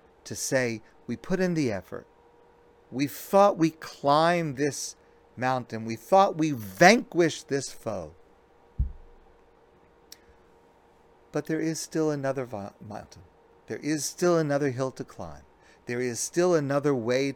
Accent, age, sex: American, 50-69, male